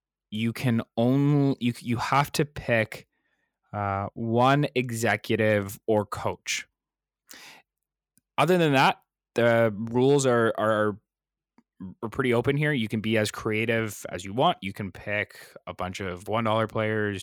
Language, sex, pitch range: English, male, 100-125 Hz